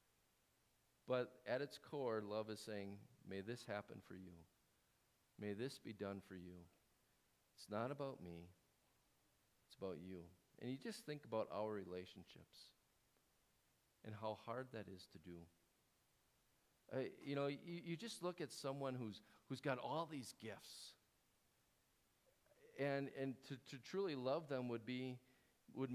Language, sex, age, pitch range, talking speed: English, male, 50-69, 110-155 Hz, 150 wpm